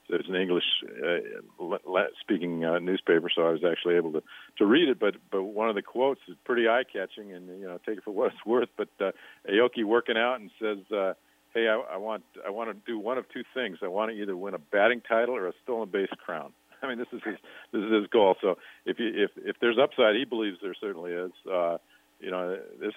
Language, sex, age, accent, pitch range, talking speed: English, male, 50-69, American, 90-105 Hz, 245 wpm